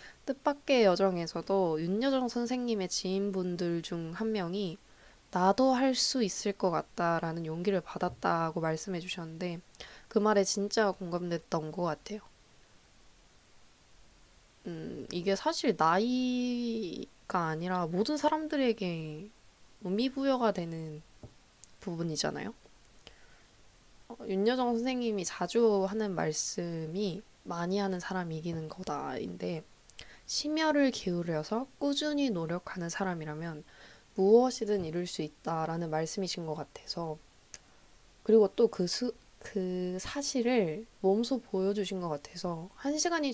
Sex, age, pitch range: female, 20-39, 170-230 Hz